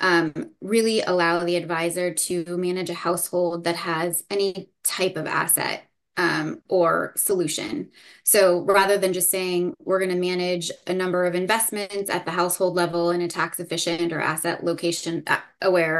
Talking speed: 160 wpm